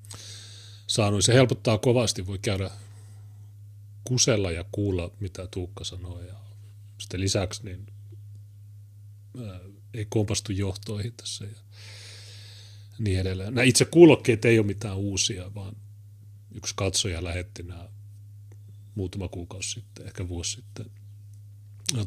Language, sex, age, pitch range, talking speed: Finnish, male, 30-49, 100-105 Hz, 110 wpm